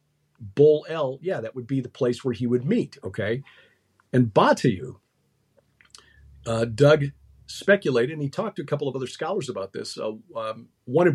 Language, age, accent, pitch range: English, 50-69, American, 110-145 Hz